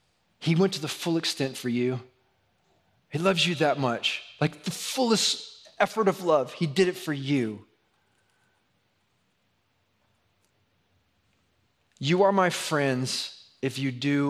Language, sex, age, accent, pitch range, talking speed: English, male, 30-49, American, 135-185 Hz, 130 wpm